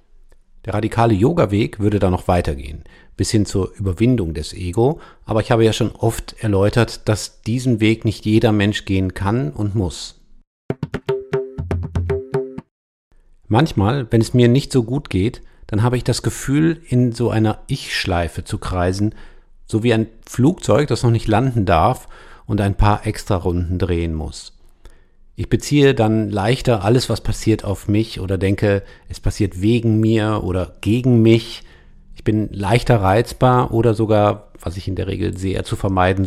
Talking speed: 160 wpm